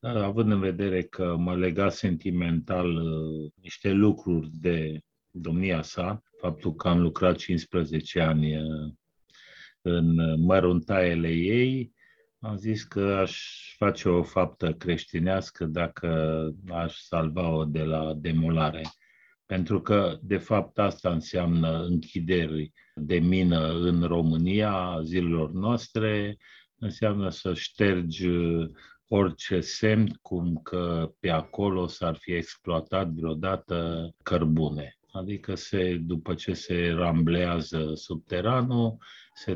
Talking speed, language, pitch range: 105 wpm, Romanian, 80-95 Hz